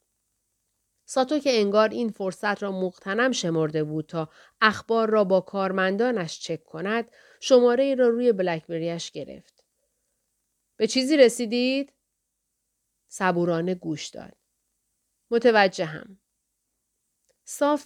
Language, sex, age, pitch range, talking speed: Persian, female, 40-59, 180-240 Hz, 100 wpm